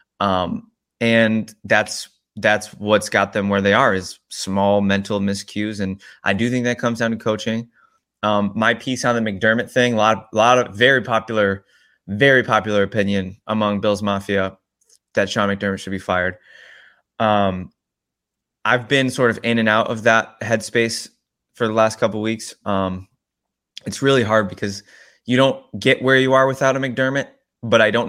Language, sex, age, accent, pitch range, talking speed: English, male, 20-39, American, 100-120 Hz, 175 wpm